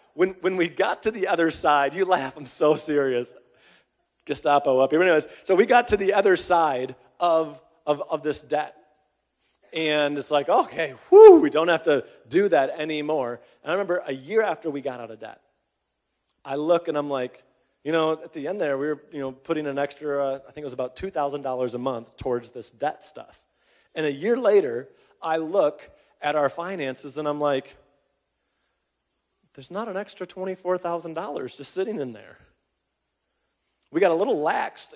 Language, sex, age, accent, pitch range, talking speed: English, male, 30-49, American, 135-160 Hz, 185 wpm